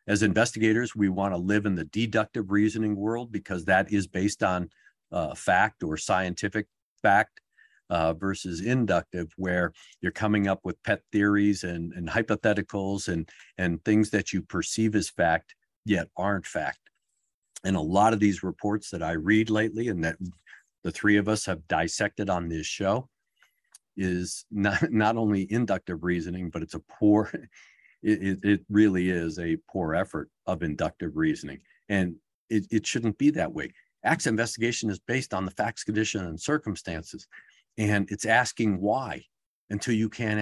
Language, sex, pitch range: English, male, 95-110 Hz